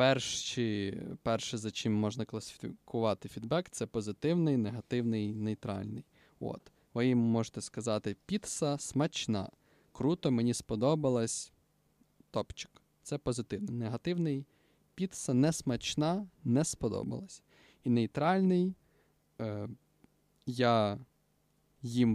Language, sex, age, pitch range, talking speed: Ukrainian, male, 20-39, 110-140 Hz, 90 wpm